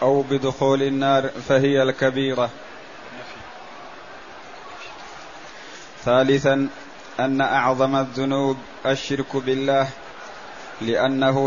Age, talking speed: 20-39, 65 wpm